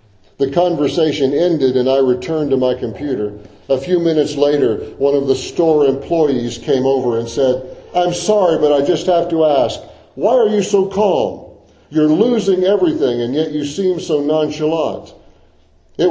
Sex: male